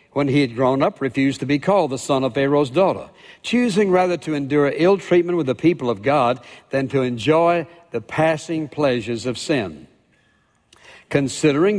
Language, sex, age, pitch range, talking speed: English, male, 60-79, 130-160 Hz, 175 wpm